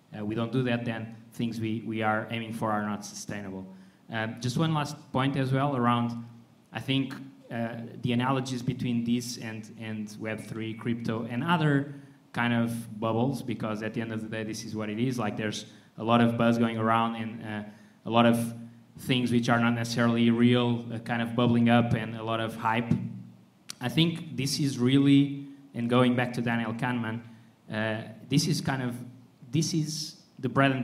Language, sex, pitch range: English, male, 115-130 Hz